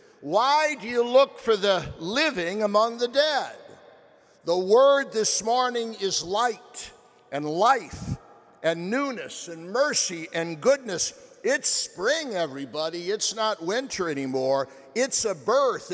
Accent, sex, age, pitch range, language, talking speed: American, male, 50-69, 125-180 Hz, English, 130 wpm